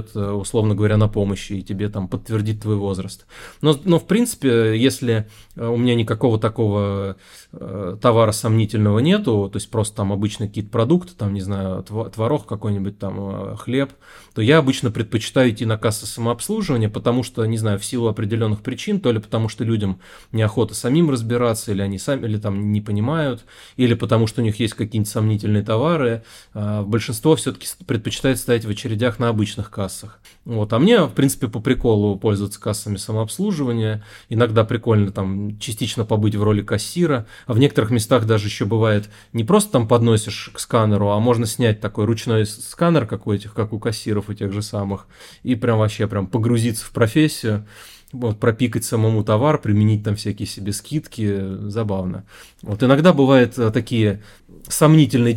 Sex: male